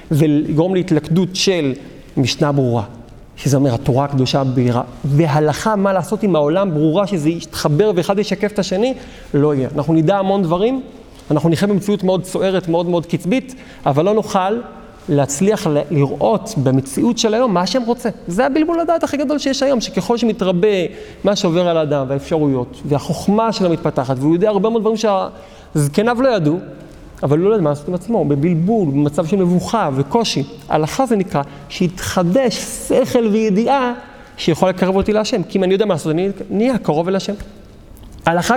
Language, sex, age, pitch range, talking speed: Hebrew, male, 40-59, 160-230 Hz, 170 wpm